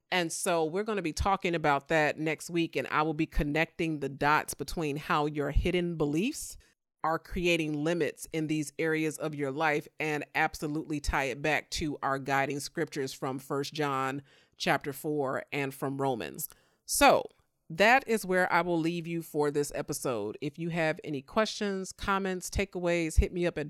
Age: 40-59